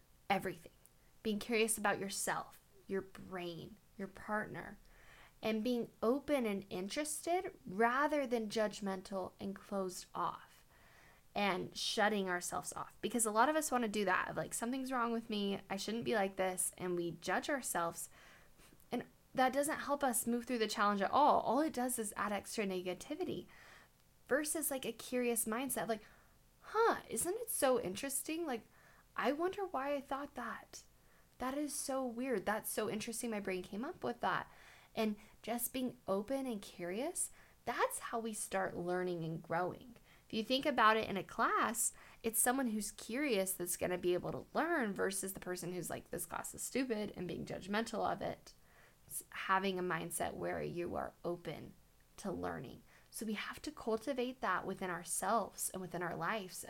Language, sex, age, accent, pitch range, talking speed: English, female, 10-29, American, 190-255 Hz, 175 wpm